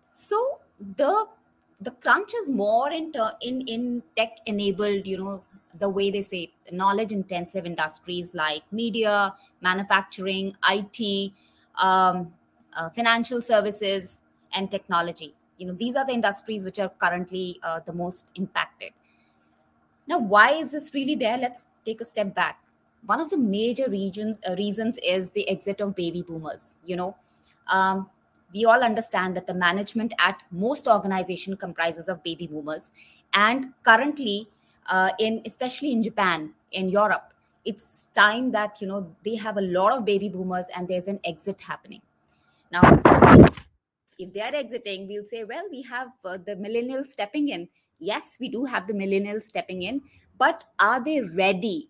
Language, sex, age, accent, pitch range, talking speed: English, female, 20-39, Indian, 185-230 Hz, 160 wpm